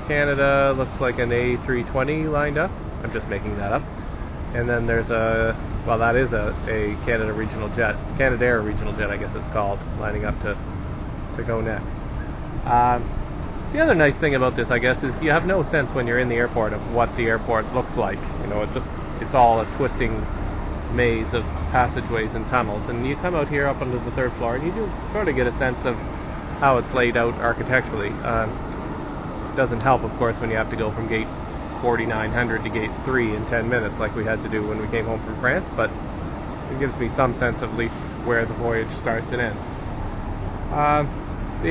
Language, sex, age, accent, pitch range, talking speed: English, male, 30-49, American, 105-125 Hz, 210 wpm